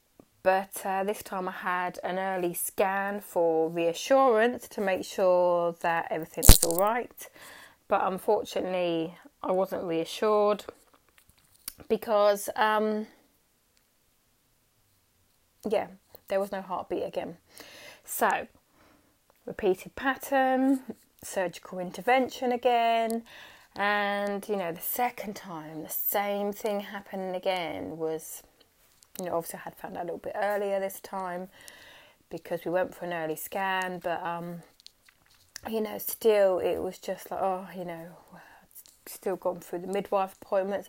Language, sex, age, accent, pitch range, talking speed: English, female, 20-39, British, 180-215 Hz, 130 wpm